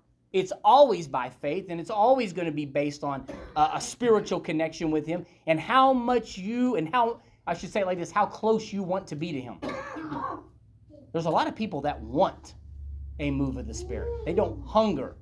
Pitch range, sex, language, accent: 120-165 Hz, male, English, American